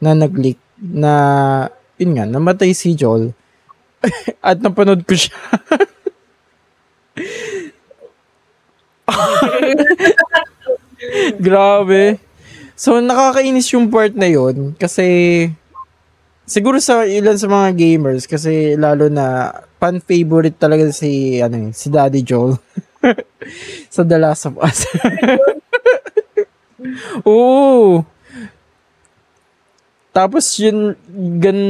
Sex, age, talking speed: male, 20-39, 90 wpm